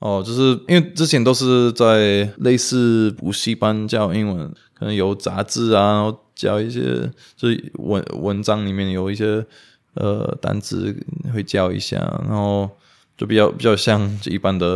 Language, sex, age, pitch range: Chinese, male, 20-39, 100-115 Hz